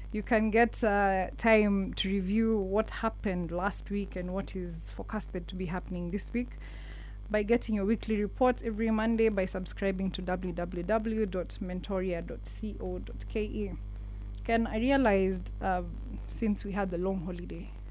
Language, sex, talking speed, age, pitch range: English, female, 135 wpm, 20-39, 175-210 Hz